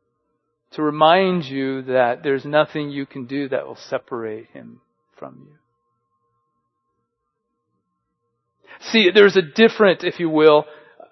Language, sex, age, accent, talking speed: English, male, 40-59, American, 120 wpm